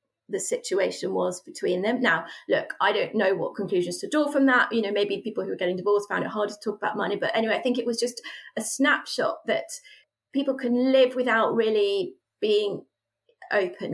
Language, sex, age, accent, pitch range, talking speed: English, female, 30-49, British, 215-270 Hz, 205 wpm